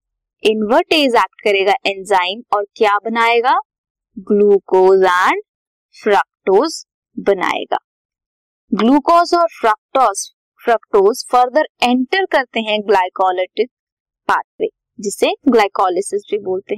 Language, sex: Hindi, female